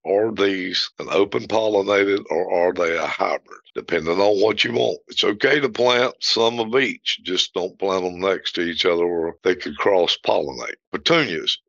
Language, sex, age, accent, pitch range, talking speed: English, male, 60-79, American, 90-105 Hz, 185 wpm